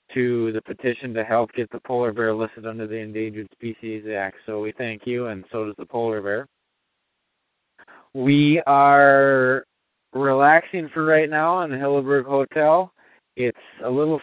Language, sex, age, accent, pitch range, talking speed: English, male, 20-39, American, 120-150 Hz, 160 wpm